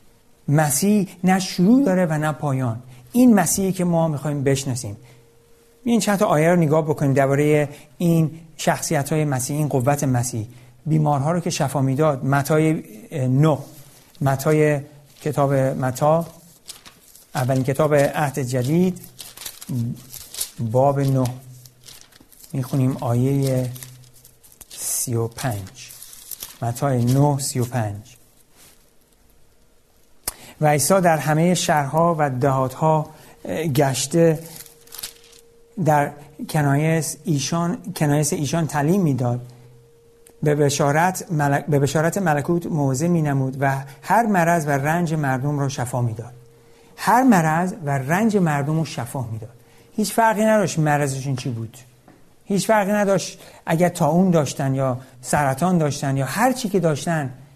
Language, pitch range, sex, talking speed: Persian, 130-165 Hz, male, 115 wpm